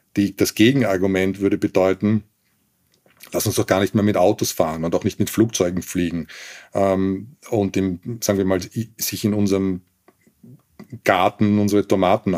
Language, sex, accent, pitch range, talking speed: German, male, Austrian, 95-110 Hz, 155 wpm